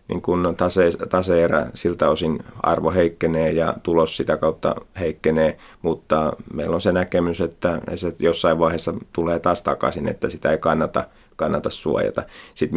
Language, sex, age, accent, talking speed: Finnish, male, 30-49, native, 150 wpm